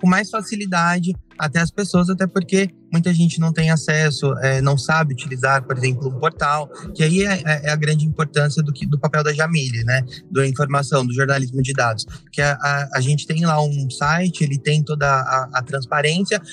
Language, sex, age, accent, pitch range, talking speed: Portuguese, male, 20-39, Brazilian, 140-170 Hz, 205 wpm